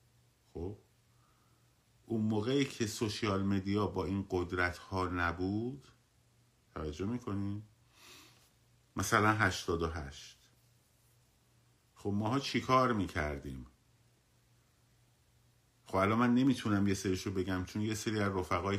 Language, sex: Persian, male